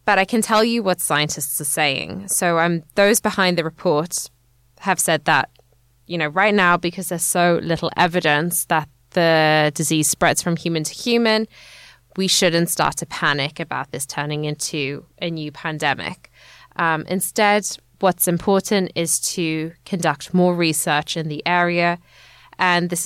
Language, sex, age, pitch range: English, female, 20-39, 150-190 Hz